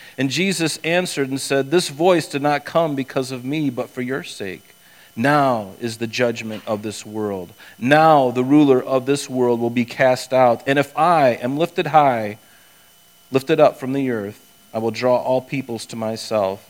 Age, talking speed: 40-59, 185 wpm